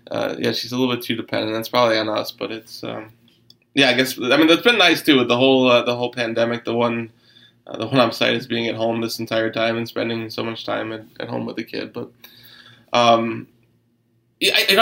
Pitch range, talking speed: 115-130 Hz, 235 wpm